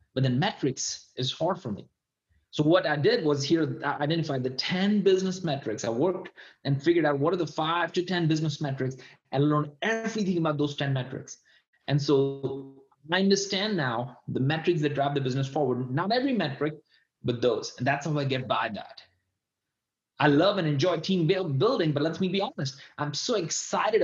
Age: 30-49